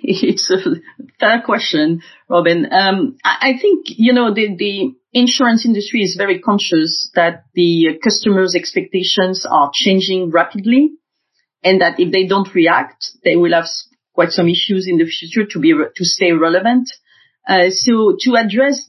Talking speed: 155 wpm